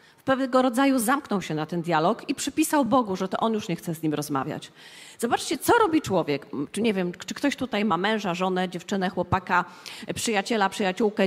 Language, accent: Polish, native